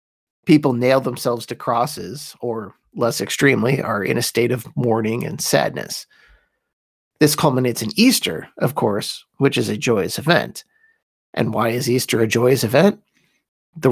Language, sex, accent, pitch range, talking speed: English, male, American, 120-155 Hz, 150 wpm